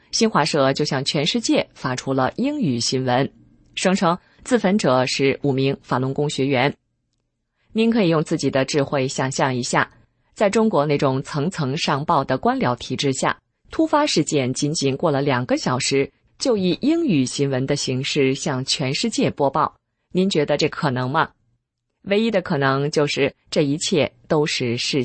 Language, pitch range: English, 130-180 Hz